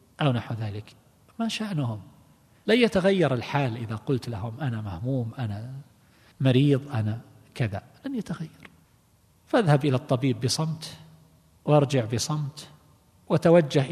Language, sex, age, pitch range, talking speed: Arabic, male, 50-69, 115-140 Hz, 110 wpm